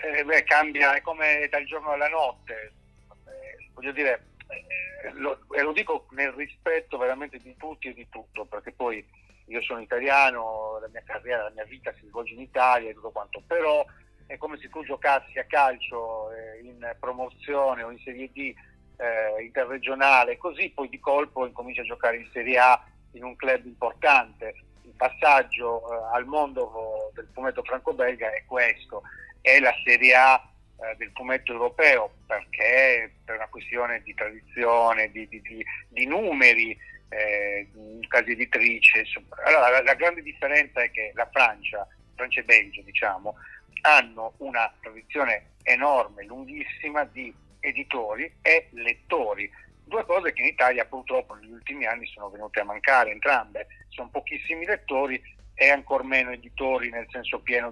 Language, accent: Italian, native